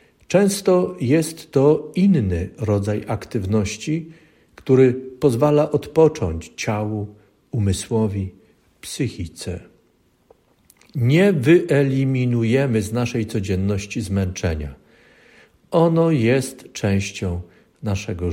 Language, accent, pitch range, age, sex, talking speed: Polish, native, 105-150 Hz, 50-69, male, 70 wpm